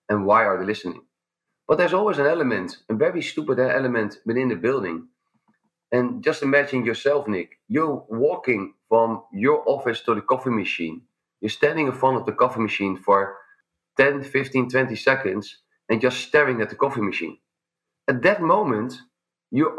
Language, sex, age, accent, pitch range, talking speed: English, male, 40-59, Dutch, 115-160 Hz, 165 wpm